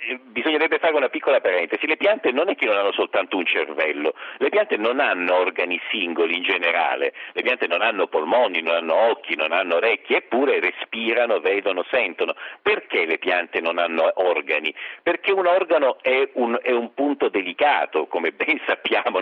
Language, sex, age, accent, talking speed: Italian, male, 50-69, native, 175 wpm